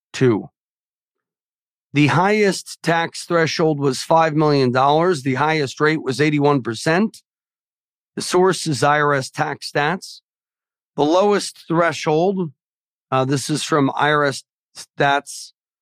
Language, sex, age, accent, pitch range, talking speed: English, male, 40-59, American, 140-165 Hz, 100 wpm